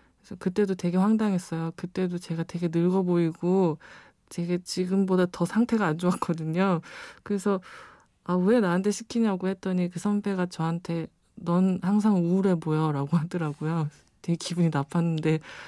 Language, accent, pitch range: Korean, native, 170-205 Hz